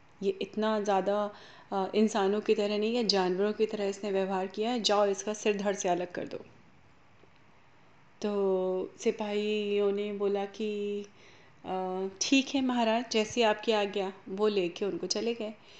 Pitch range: 190-215 Hz